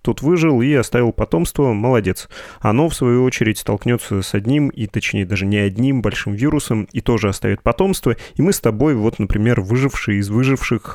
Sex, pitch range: male, 100-125 Hz